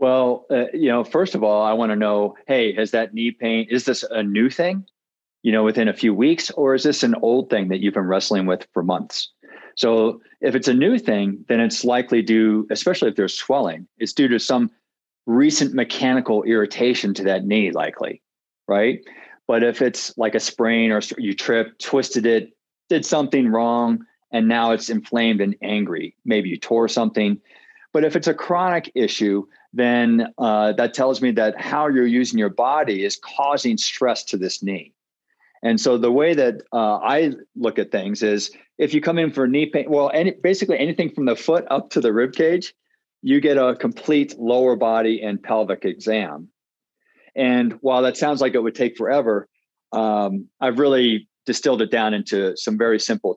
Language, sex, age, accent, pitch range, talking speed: English, male, 40-59, American, 110-140 Hz, 190 wpm